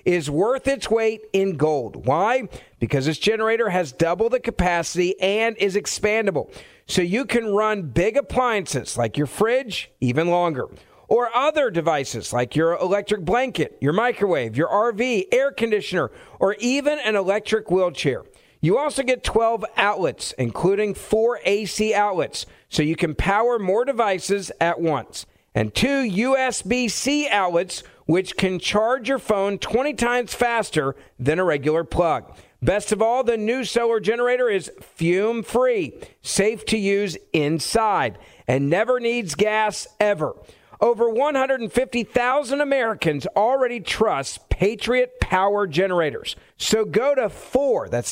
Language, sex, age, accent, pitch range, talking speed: English, male, 50-69, American, 175-235 Hz, 140 wpm